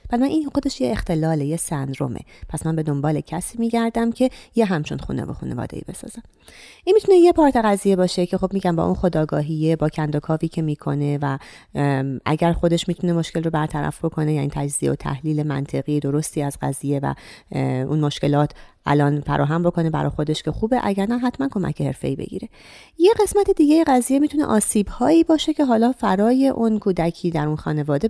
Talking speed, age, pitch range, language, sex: 185 wpm, 30-49, 150-215 Hz, Persian, female